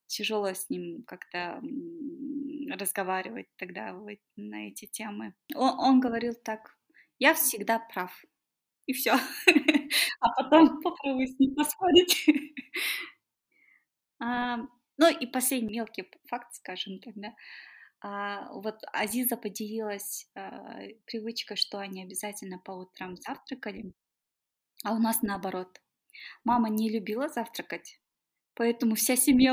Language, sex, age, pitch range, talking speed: Russian, female, 20-39, 200-280 Hz, 105 wpm